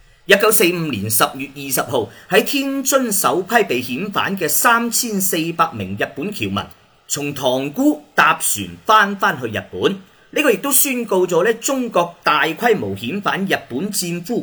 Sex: male